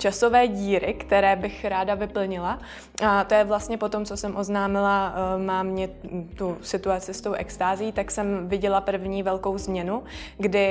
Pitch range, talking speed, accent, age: 185-200 Hz, 165 wpm, native, 20-39